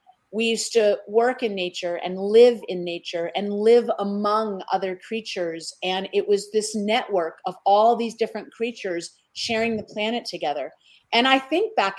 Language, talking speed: English, 165 wpm